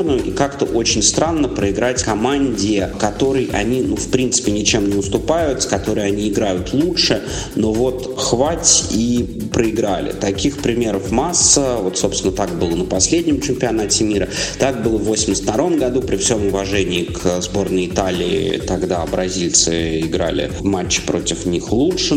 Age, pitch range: 30-49, 95-110 Hz